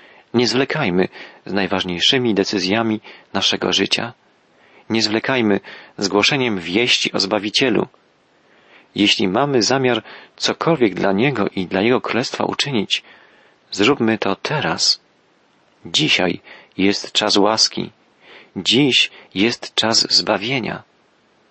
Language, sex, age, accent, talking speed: Polish, male, 40-59, native, 100 wpm